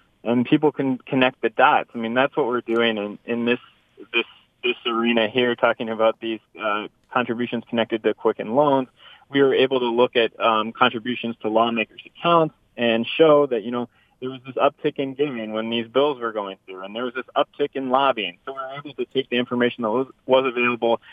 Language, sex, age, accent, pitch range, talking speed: English, male, 20-39, American, 115-135 Hz, 210 wpm